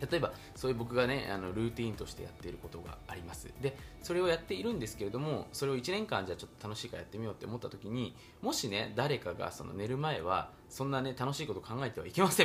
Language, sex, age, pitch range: Japanese, male, 20-39, 105-170 Hz